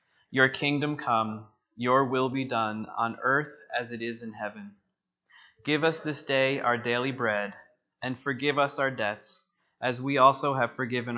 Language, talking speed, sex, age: English, 165 wpm, male, 20-39